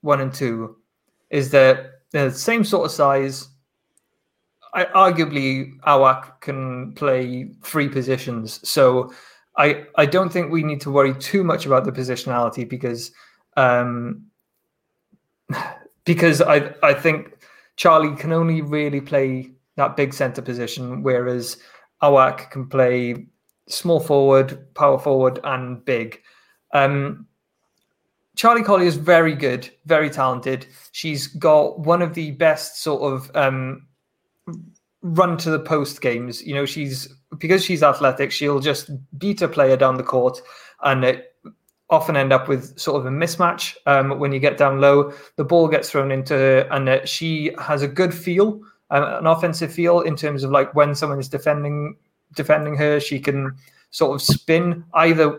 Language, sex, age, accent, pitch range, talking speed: English, male, 20-39, British, 130-160 Hz, 150 wpm